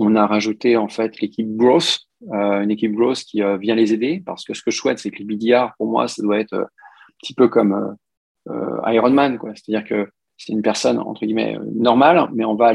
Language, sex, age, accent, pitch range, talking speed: French, male, 40-59, French, 110-145 Hz, 245 wpm